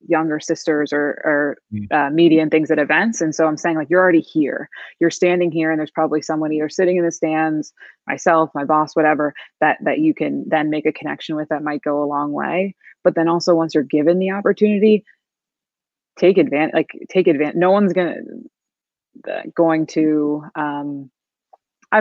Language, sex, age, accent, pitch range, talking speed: English, female, 20-39, American, 155-170 Hz, 190 wpm